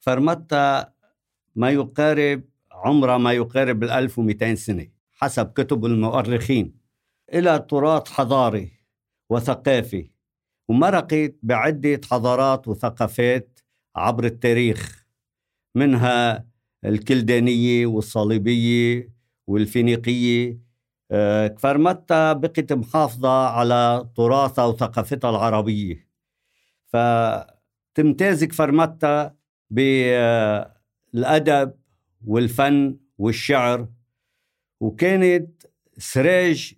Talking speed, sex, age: 65 wpm, male, 60-79